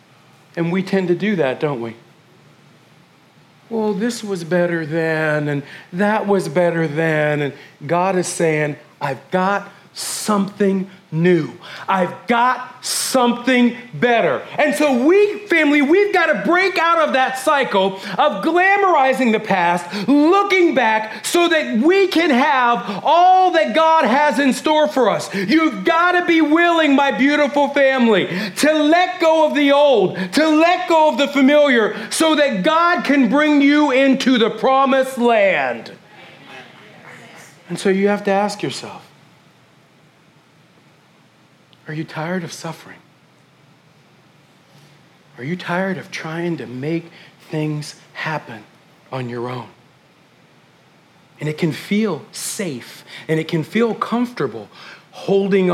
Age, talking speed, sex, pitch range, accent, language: 40-59, 135 wpm, male, 175-290 Hz, American, English